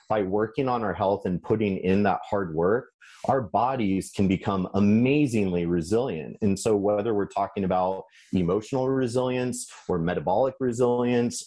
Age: 30-49